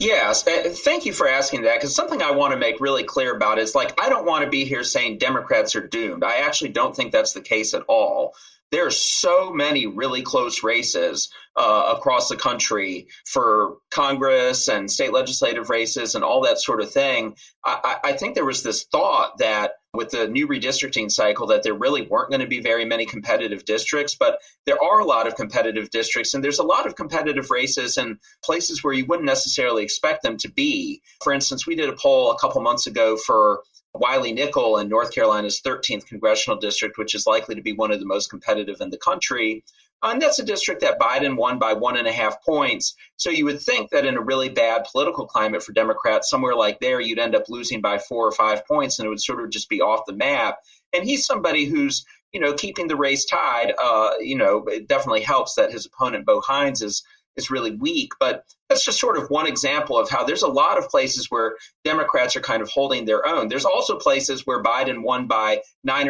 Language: English